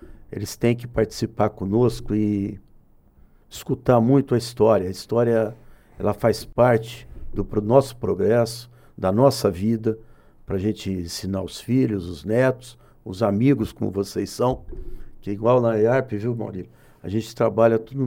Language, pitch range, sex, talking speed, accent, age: Portuguese, 100-120 Hz, male, 150 wpm, Brazilian, 60-79